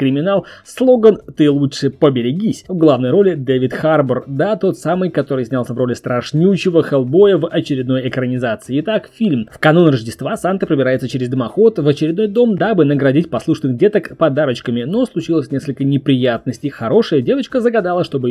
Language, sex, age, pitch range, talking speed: Russian, male, 20-39, 130-195 Hz, 155 wpm